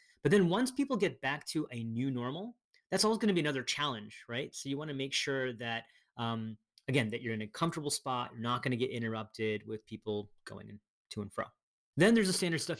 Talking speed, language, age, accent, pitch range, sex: 235 wpm, English, 30-49, American, 115-140 Hz, male